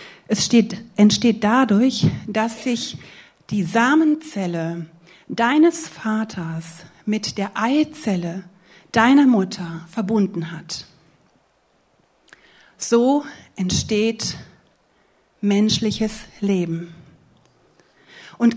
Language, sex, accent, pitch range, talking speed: German, female, German, 185-245 Hz, 70 wpm